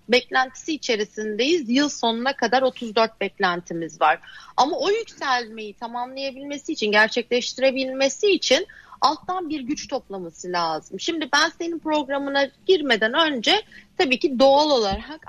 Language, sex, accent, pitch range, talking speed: Turkish, female, native, 225-310 Hz, 120 wpm